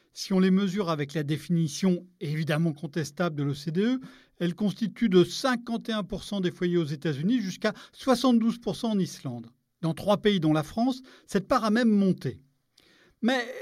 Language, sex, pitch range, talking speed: French, male, 160-225 Hz, 155 wpm